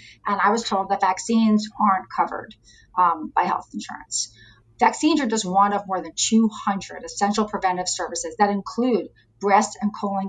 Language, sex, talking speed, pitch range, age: English, female, 165 wpm, 175-220 Hz, 40-59